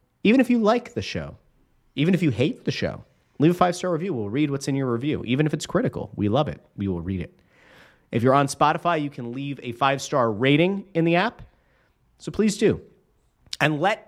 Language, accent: English, American